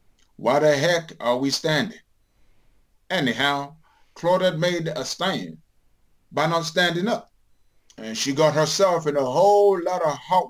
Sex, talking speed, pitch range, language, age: male, 145 wpm, 120-170 Hz, English, 30-49